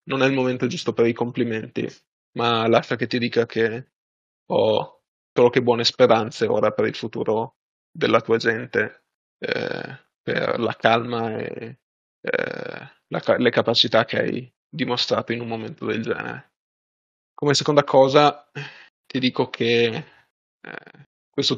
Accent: native